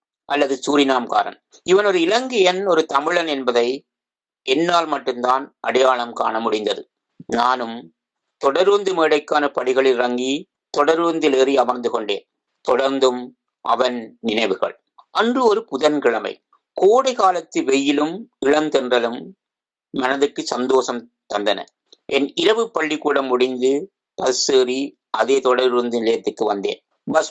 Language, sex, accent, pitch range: Tamil, male, native, 130-165 Hz